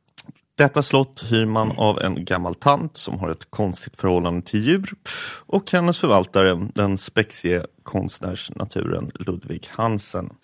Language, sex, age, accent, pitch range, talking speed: English, male, 30-49, Swedish, 95-135 Hz, 130 wpm